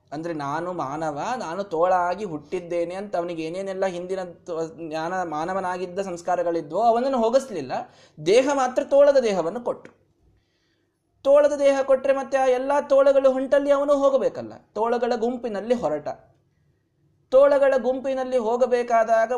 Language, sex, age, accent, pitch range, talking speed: Kannada, male, 20-39, native, 195-260 Hz, 115 wpm